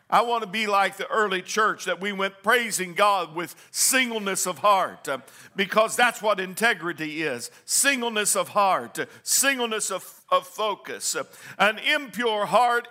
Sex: male